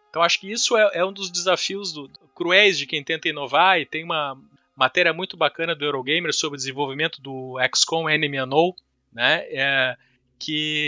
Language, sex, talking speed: Portuguese, male, 175 wpm